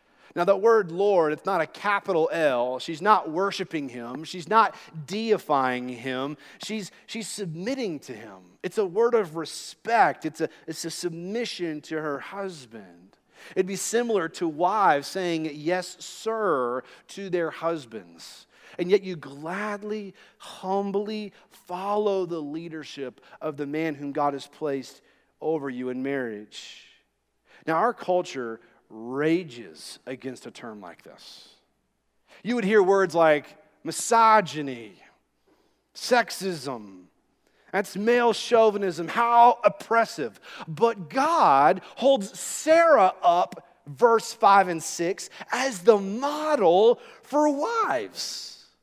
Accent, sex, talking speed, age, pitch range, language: American, male, 125 wpm, 40-59, 150-215 Hz, English